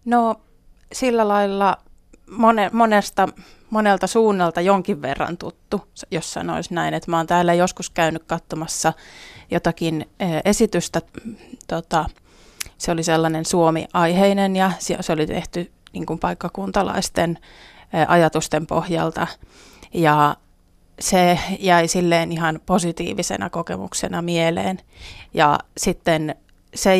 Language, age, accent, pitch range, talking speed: Finnish, 30-49, native, 160-185 Hz, 100 wpm